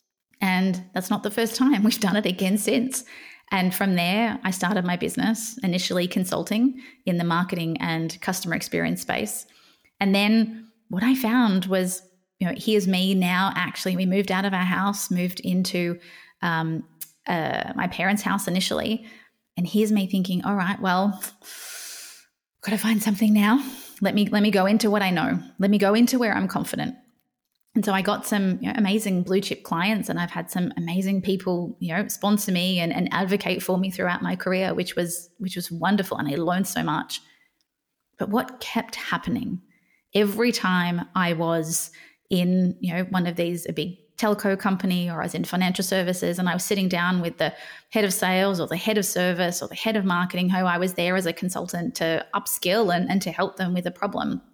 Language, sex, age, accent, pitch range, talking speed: English, female, 20-39, Australian, 180-215 Hz, 200 wpm